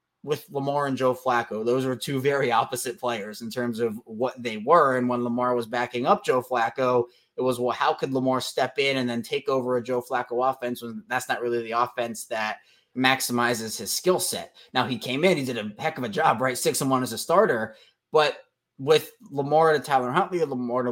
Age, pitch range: 20-39, 125-150 Hz